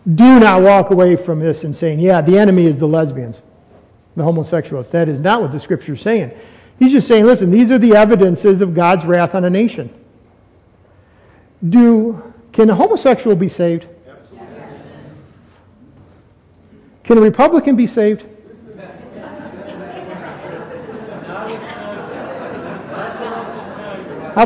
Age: 50-69